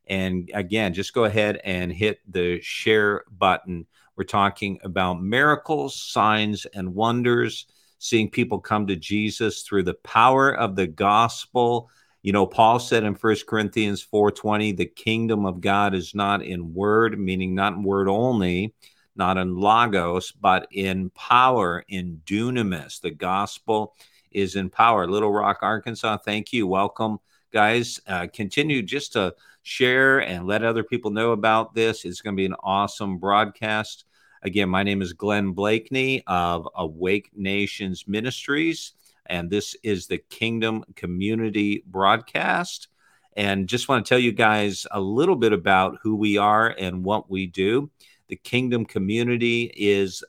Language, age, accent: English, 50-69, American